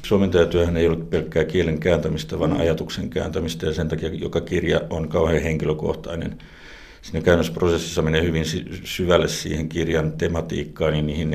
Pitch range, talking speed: 80-85 Hz, 145 wpm